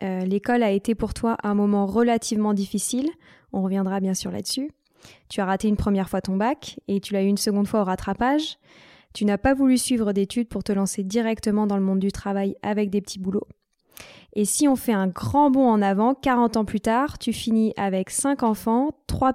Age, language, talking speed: 20-39, French, 215 wpm